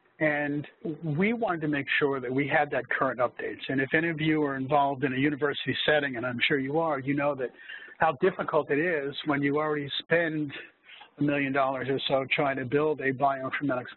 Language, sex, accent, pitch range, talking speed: English, male, American, 140-160 Hz, 210 wpm